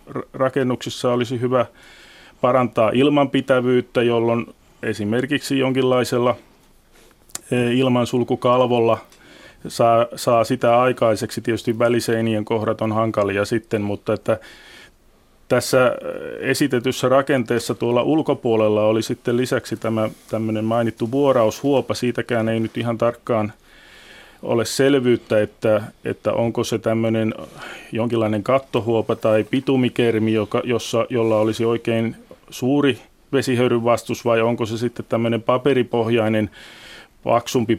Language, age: Finnish, 30-49